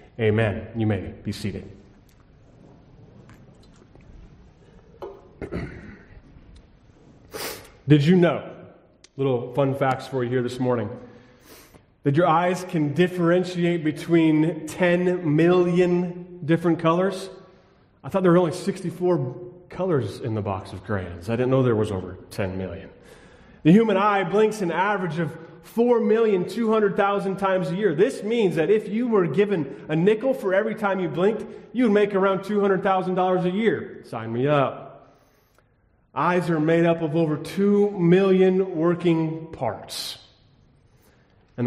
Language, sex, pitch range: English, male, 125-185 Hz